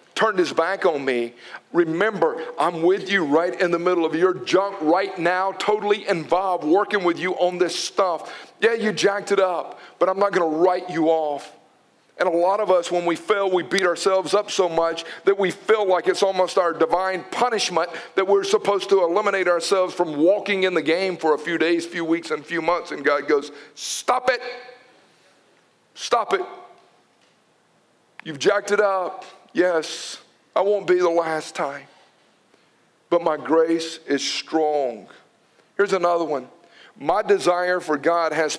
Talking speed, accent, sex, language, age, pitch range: 180 wpm, American, male, English, 50-69, 160-195 Hz